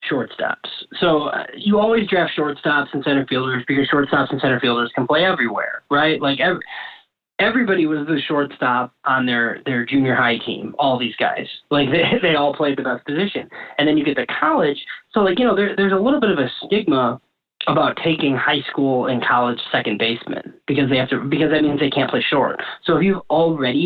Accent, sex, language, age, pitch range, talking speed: American, male, English, 20-39, 130-155 Hz, 210 wpm